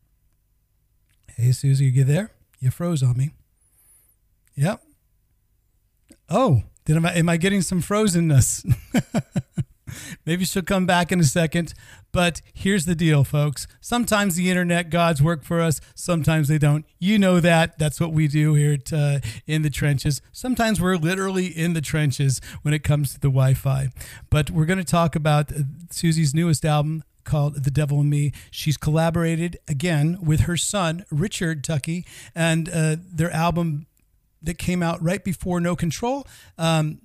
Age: 40-59